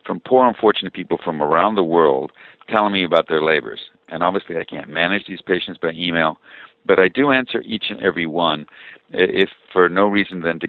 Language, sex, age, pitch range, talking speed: English, male, 60-79, 75-100 Hz, 200 wpm